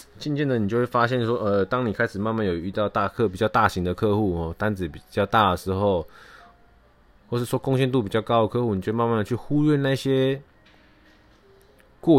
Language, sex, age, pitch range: Chinese, male, 20-39, 90-115 Hz